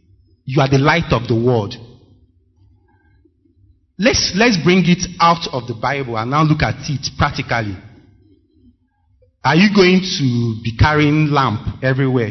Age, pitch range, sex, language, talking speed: 30-49, 100-150 Hz, male, English, 140 wpm